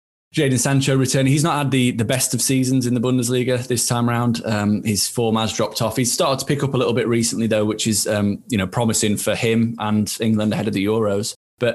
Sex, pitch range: male, 105-120 Hz